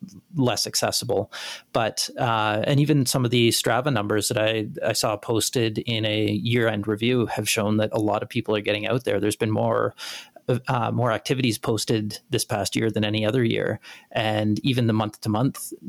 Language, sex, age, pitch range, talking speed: English, male, 30-49, 105-125 Hz, 190 wpm